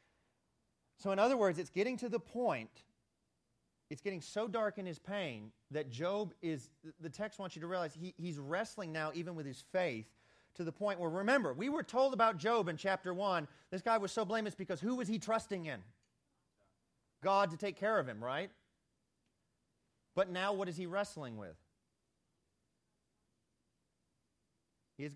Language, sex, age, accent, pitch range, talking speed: English, male, 30-49, American, 155-210 Hz, 170 wpm